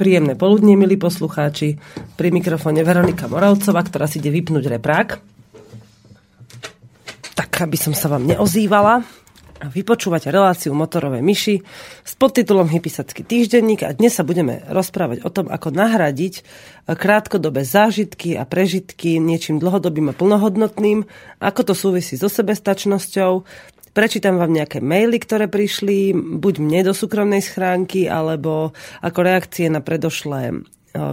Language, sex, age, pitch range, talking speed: Slovak, female, 40-59, 155-205 Hz, 125 wpm